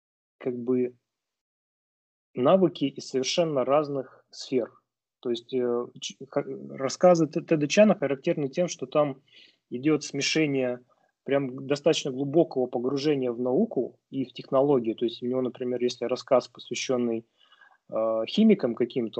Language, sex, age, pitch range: Russian, male, 20-39, 120-150 Hz